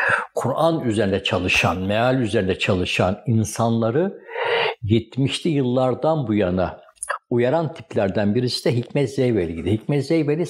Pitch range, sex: 100-135 Hz, male